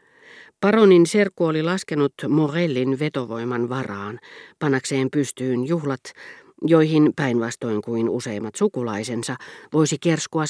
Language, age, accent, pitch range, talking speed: Finnish, 40-59, native, 125-170 Hz, 95 wpm